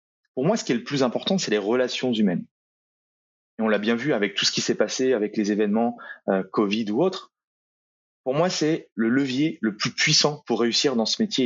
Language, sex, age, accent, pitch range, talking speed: French, male, 30-49, French, 110-170 Hz, 225 wpm